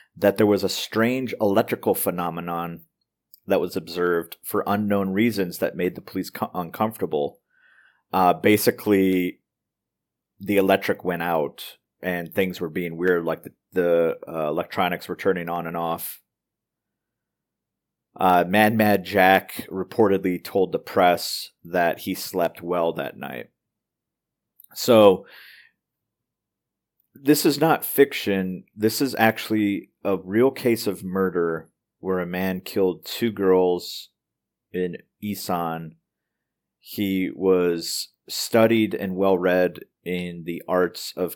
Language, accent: English, American